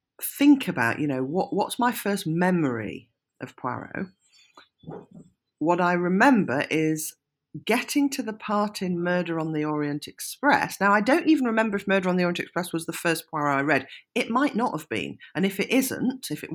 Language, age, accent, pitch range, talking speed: English, 40-59, British, 155-220 Hz, 190 wpm